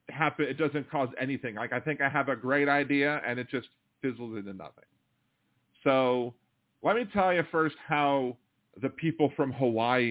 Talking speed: 180 wpm